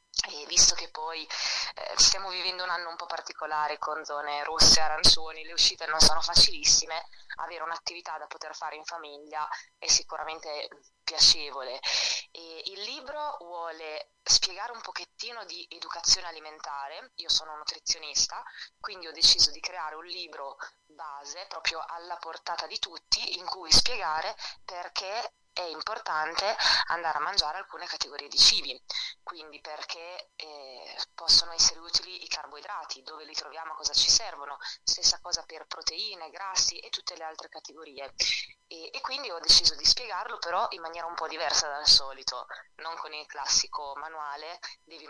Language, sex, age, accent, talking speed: Italian, female, 20-39, native, 150 wpm